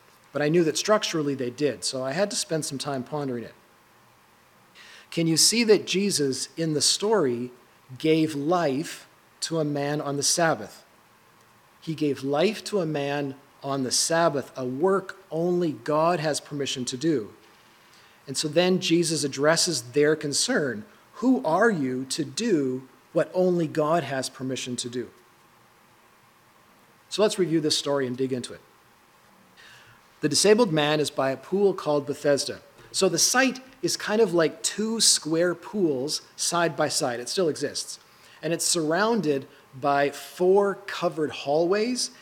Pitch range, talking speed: 135-175 Hz, 155 wpm